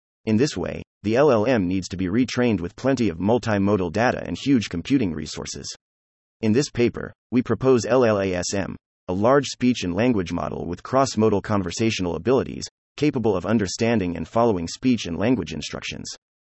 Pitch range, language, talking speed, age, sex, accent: 90-120 Hz, English, 155 wpm, 30-49, male, American